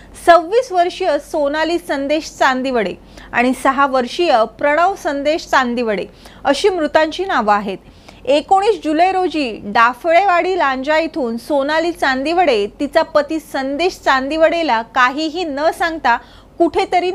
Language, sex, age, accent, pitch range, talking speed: English, female, 30-49, Indian, 275-345 Hz, 105 wpm